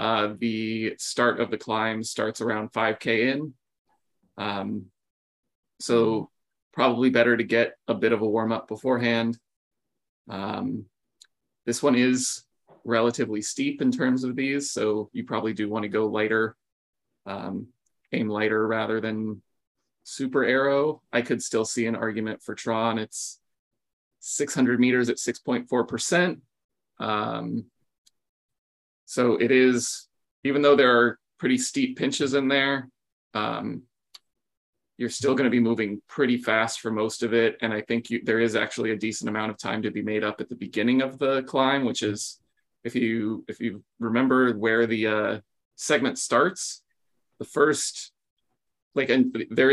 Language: English